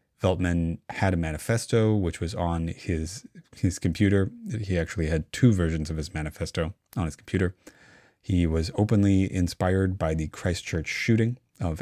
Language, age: English, 30-49